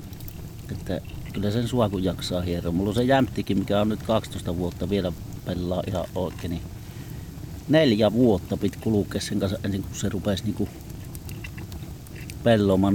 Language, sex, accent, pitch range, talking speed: Finnish, male, native, 95-115 Hz, 145 wpm